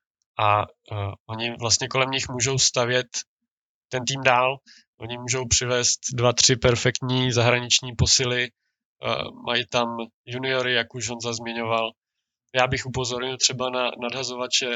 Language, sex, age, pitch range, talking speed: Czech, male, 20-39, 120-135 Hz, 135 wpm